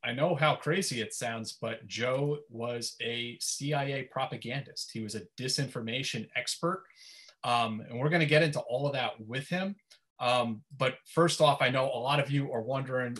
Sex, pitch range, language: male, 115-140 Hz, English